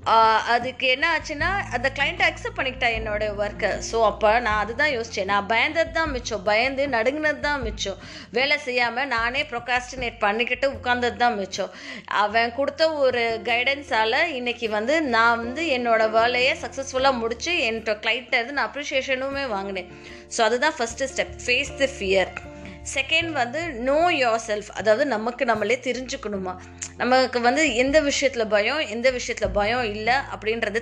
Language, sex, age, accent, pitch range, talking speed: Tamil, female, 20-39, native, 220-275 Hz, 140 wpm